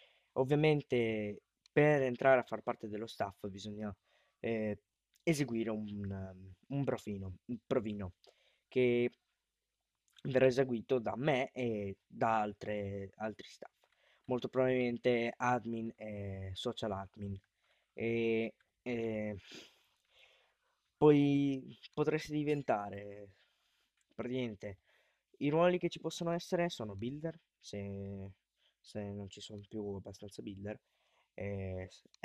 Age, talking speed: 20-39, 100 wpm